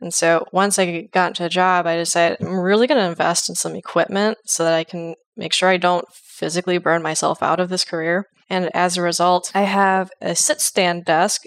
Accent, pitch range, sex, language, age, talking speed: American, 175-215 Hz, female, English, 10-29, 220 wpm